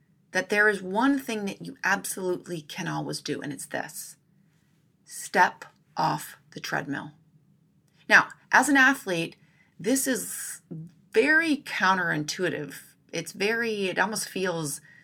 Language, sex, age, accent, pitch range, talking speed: English, female, 30-49, American, 160-235 Hz, 125 wpm